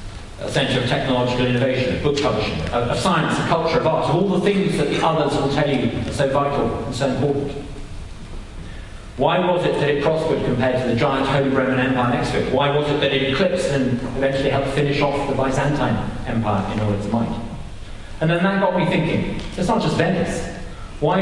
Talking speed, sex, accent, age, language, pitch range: 205 wpm, male, British, 40-59, English, 130-175 Hz